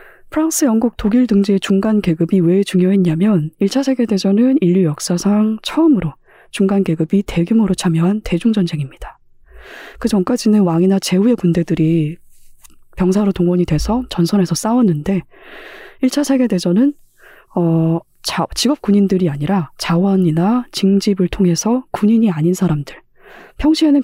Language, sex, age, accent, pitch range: Korean, female, 20-39, native, 175-225 Hz